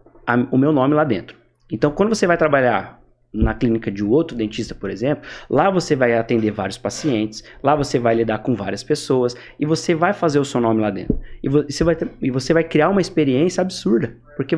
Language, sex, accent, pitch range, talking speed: Portuguese, male, Brazilian, 115-160 Hz, 200 wpm